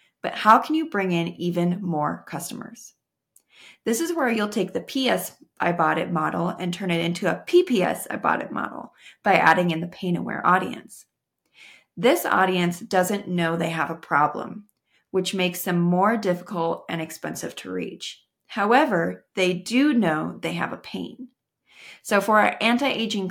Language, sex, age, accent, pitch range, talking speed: English, female, 30-49, American, 170-220 Hz, 165 wpm